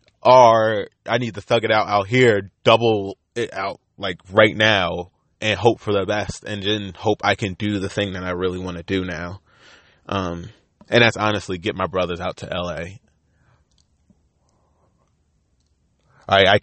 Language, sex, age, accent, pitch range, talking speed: English, male, 20-39, American, 90-105 Hz, 170 wpm